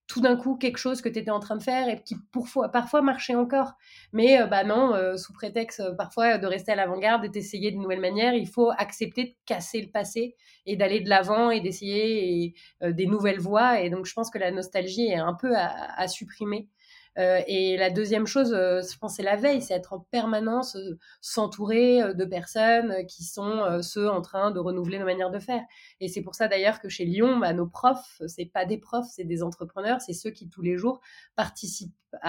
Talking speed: 230 wpm